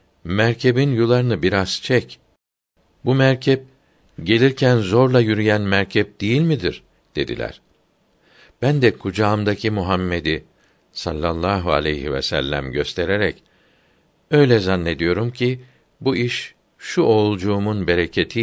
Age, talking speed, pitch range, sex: 60-79, 100 wpm, 95-120 Hz, male